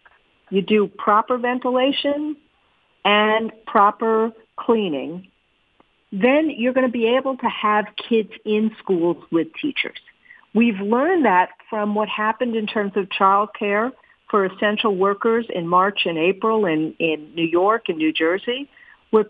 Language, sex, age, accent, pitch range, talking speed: English, female, 50-69, American, 190-235 Hz, 145 wpm